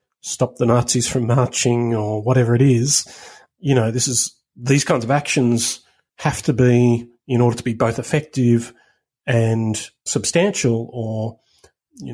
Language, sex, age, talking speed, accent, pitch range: English, male, 40-59, 150 wpm, Australian, 120-135 Hz